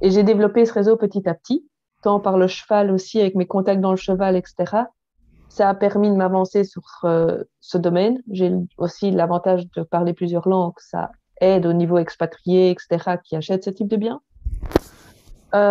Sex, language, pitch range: female, French, 185-230 Hz